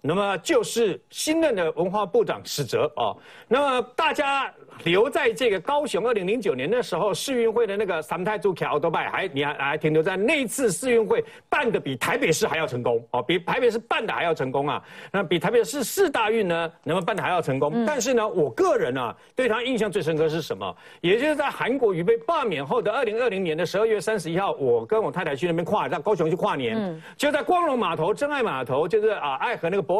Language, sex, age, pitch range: Chinese, male, 50-69, 180-295 Hz